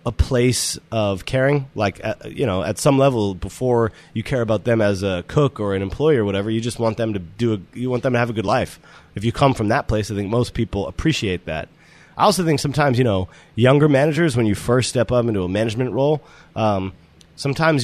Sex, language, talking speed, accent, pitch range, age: male, English, 230 wpm, American, 105-135 Hz, 30-49